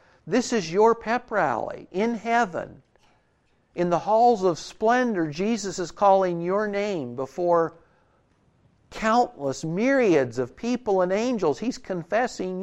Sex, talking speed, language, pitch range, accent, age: male, 125 wpm, English, 150-205 Hz, American, 50-69